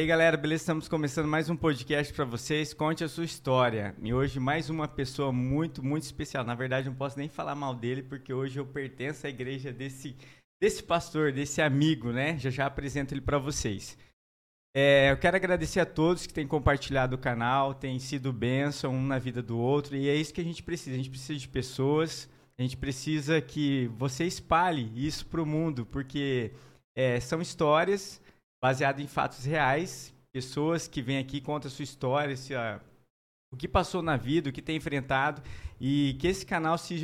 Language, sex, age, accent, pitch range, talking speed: Portuguese, male, 20-39, Brazilian, 135-165 Hz, 190 wpm